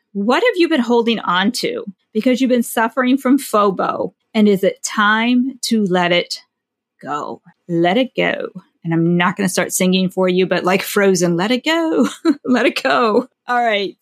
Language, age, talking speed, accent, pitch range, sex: English, 40-59, 190 wpm, American, 195-260 Hz, female